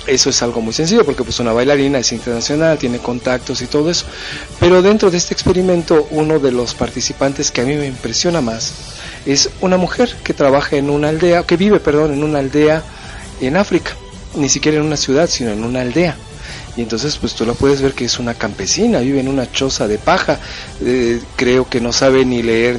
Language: Spanish